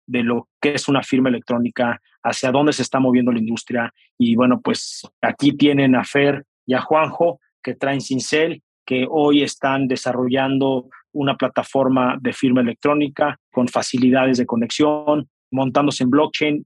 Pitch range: 130-145 Hz